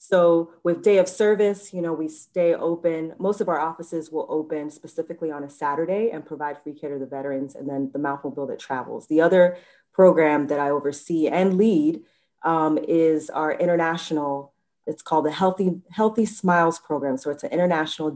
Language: English